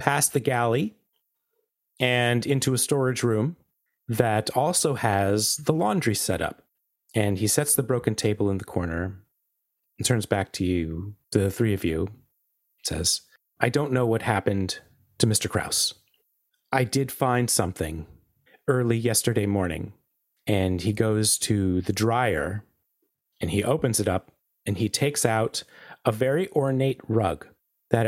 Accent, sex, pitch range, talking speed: American, male, 100-130 Hz, 145 wpm